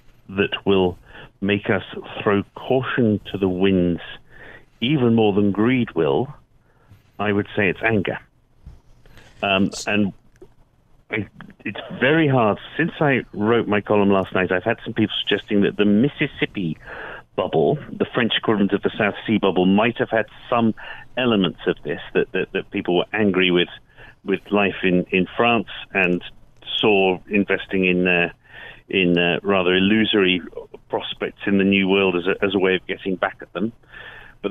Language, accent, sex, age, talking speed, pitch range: English, British, male, 50-69, 165 wpm, 95-115 Hz